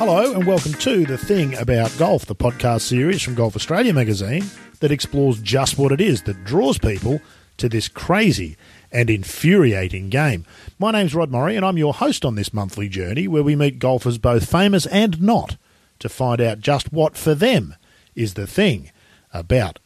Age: 40-59